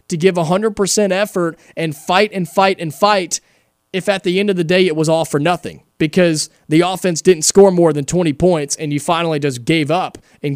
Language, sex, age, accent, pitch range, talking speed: English, male, 30-49, American, 155-195 Hz, 215 wpm